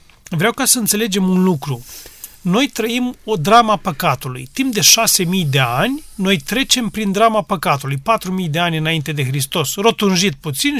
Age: 40-59